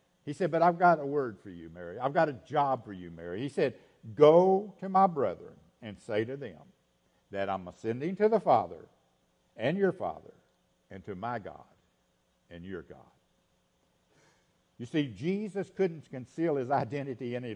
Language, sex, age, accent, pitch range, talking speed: English, male, 60-79, American, 110-165 Hz, 175 wpm